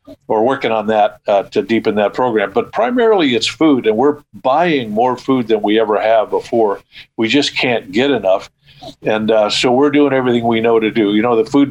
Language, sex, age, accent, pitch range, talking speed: English, male, 50-69, American, 110-135 Hz, 215 wpm